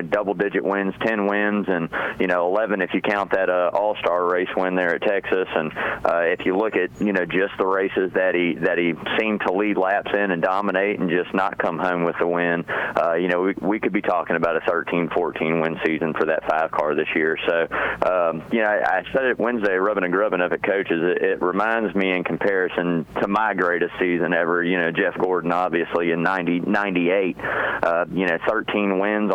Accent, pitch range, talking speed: American, 90-105 Hz, 220 wpm